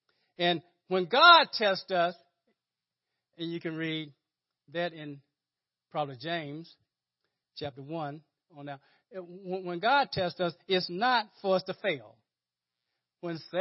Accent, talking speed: American, 120 wpm